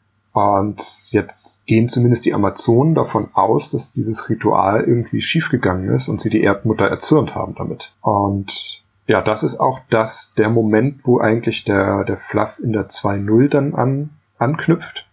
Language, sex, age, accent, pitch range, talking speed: German, male, 30-49, German, 110-125 Hz, 160 wpm